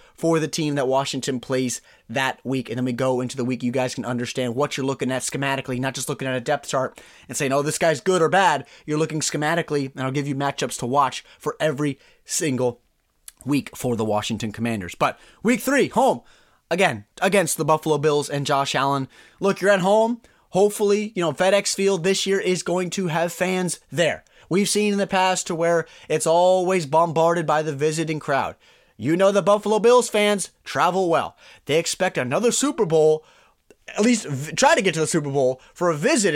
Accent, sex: American, male